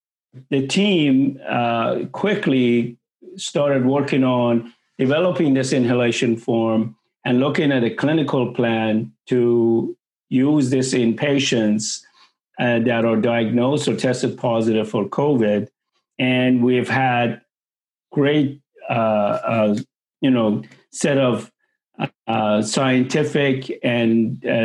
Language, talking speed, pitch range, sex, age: English, 105 wpm, 115-140 Hz, male, 50-69